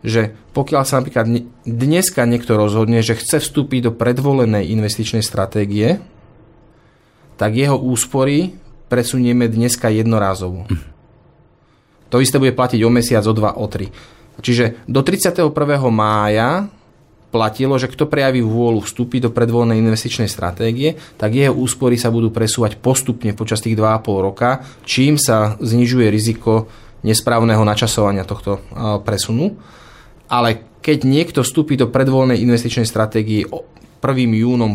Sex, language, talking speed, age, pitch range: male, Slovak, 130 wpm, 20-39, 110-125 Hz